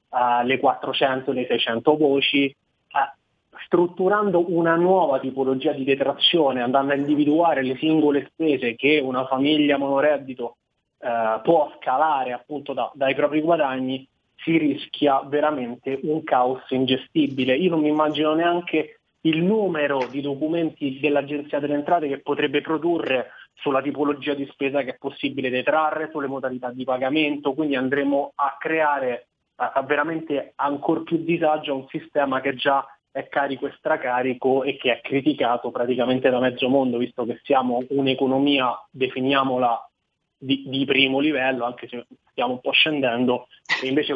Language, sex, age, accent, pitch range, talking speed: Italian, male, 30-49, native, 130-150 Hz, 145 wpm